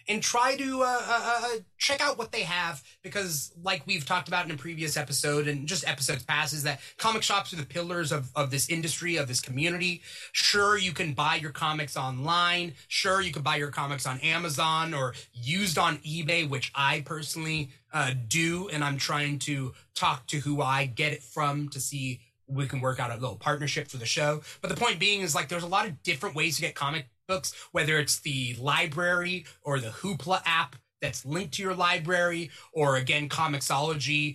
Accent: American